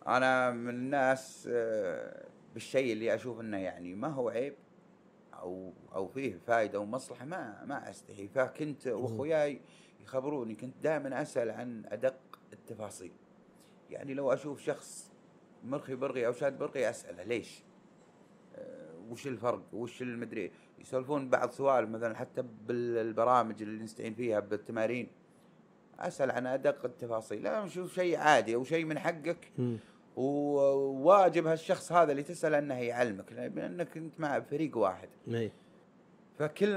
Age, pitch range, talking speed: 30-49, 120-160 Hz, 125 wpm